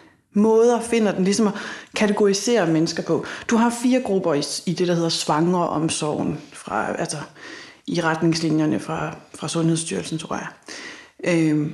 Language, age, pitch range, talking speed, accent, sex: Danish, 30-49, 165-210 Hz, 140 wpm, native, female